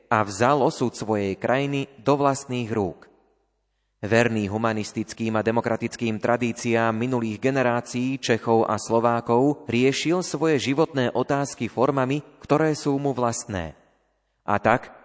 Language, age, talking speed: Slovak, 30-49, 115 wpm